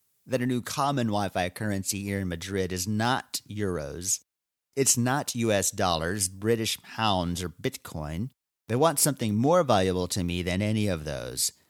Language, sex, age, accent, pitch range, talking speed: English, male, 40-59, American, 90-125 Hz, 160 wpm